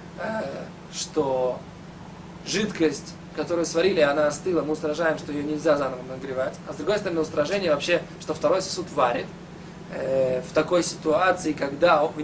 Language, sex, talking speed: Russian, male, 140 wpm